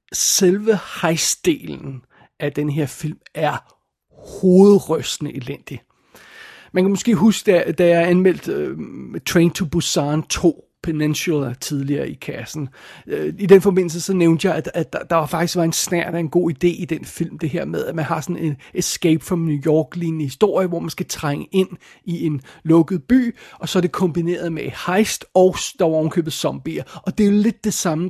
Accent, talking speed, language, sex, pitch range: native, 185 wpm, Danish, male, 160-195 Hz